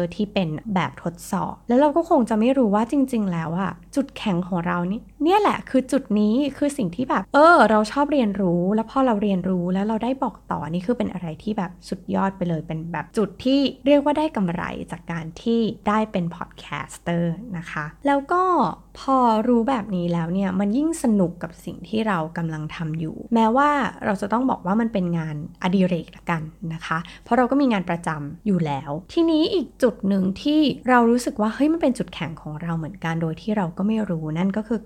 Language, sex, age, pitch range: Thai, female, 20-39, 175-250 Hz